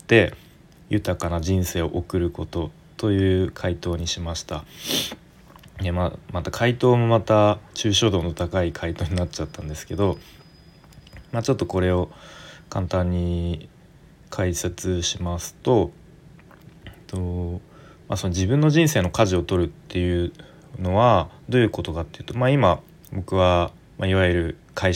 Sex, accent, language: male, native, Japanese